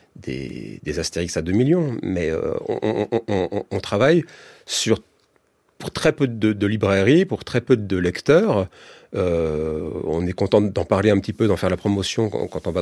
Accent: French